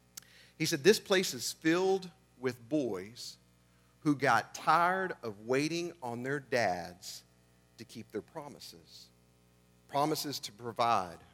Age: 50-69